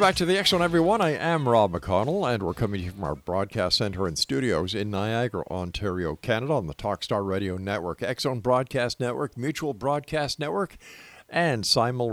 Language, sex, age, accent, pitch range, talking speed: English, male, 50-69, American, 100-145 Hz, 190 wpm